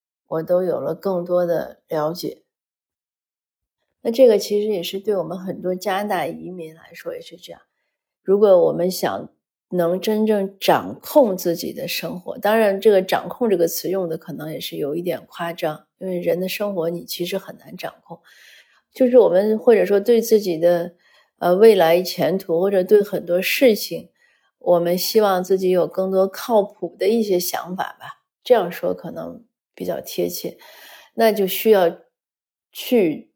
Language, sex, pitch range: Chinese, female, 175-210 Hz